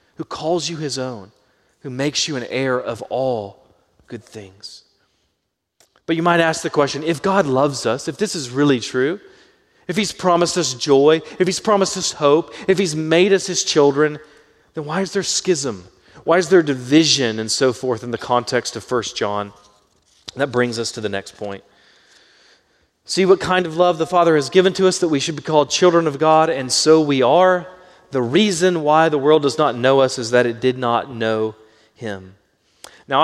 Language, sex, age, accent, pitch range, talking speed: English, male, 30-49, American, 125-165 Hz, 200 wpm